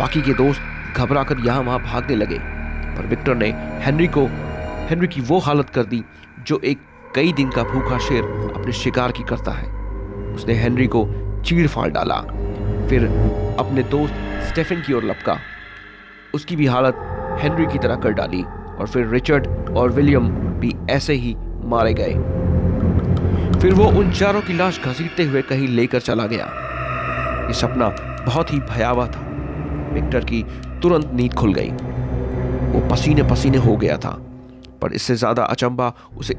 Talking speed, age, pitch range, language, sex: 140 wpm, 30-49, 100-130 Hz, Hindi, male